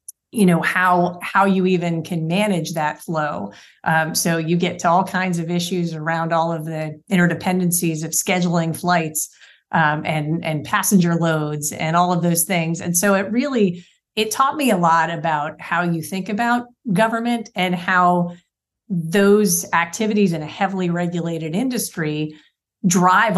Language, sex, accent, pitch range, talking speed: English, female, American, 165-195 Hz, 160 wpm